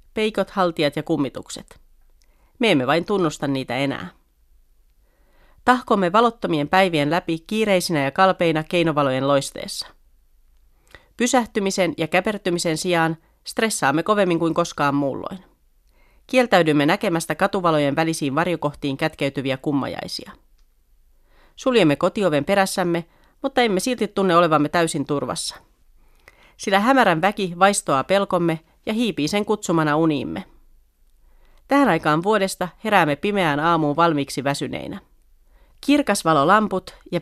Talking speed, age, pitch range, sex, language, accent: 105 wpm, 40-59, 145-195 Hz, female, Finnish, native